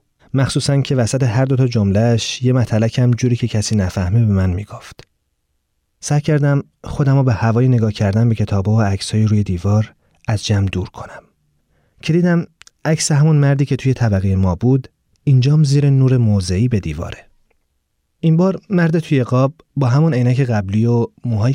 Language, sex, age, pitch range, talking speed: Persian, male, 30-49, 100-135 Hz, 170 wpm